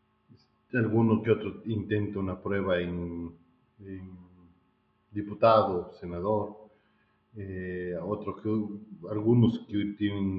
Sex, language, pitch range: male, Spanish, 90-110 Hz